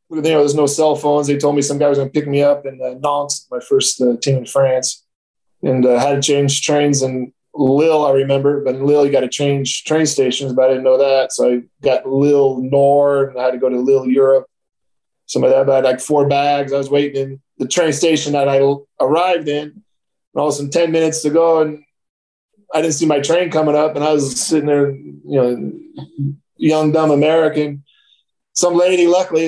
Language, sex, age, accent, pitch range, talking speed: English, male, 20-39, American, 135-155 Hz, 230 wpm